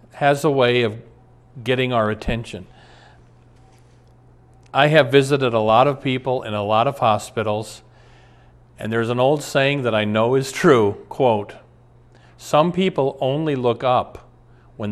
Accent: American